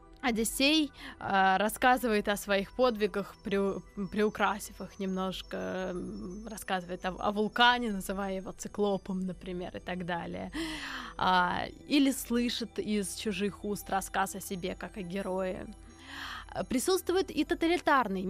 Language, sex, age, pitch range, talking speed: Russian, female, 20-39, 195-285 Hz, 105 wpm